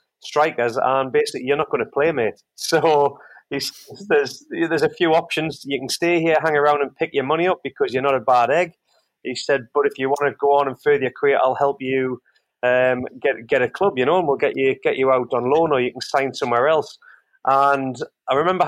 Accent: British